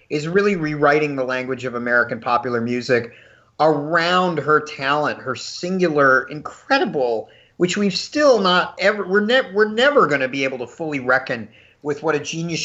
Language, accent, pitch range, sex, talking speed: English, American, 135-175 Hz, male, 160 wpm